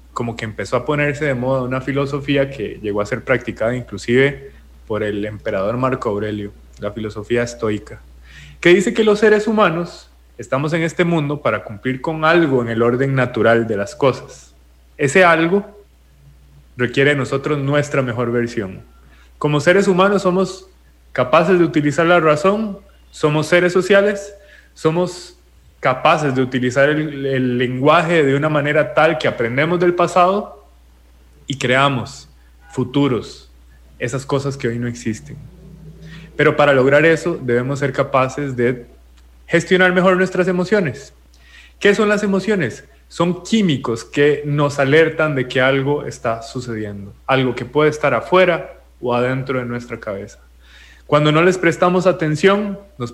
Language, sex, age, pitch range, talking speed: English, male, 20-39, 115-165 Hz, 145 wpm